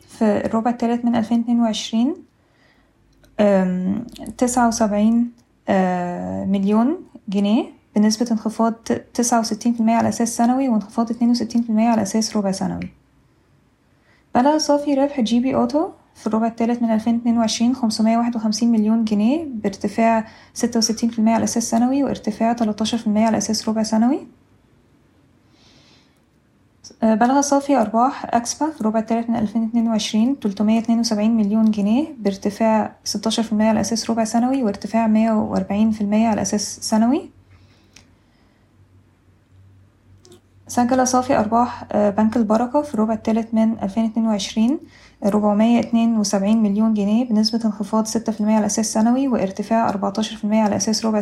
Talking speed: 135 wpm